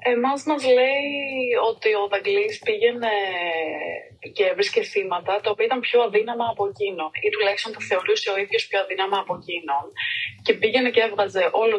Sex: female